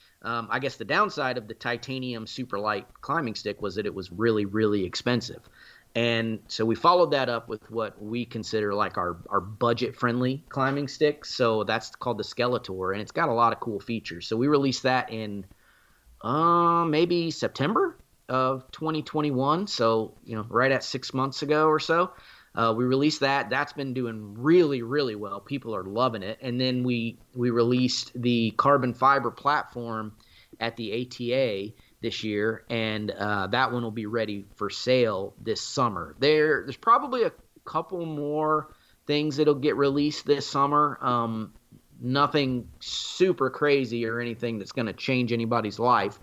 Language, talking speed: English, 175 wpm